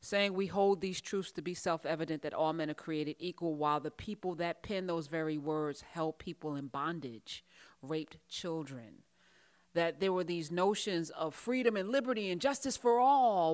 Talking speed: 180 wpm